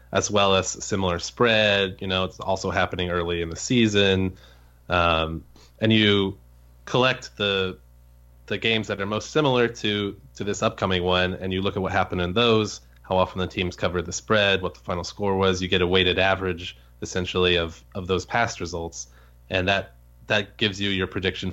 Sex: male